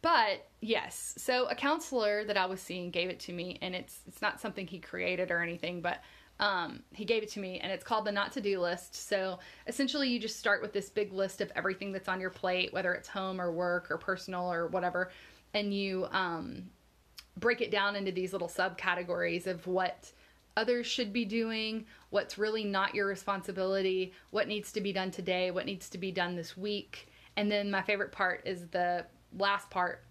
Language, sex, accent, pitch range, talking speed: English, female, American, 180-205 Hz, 205 wpm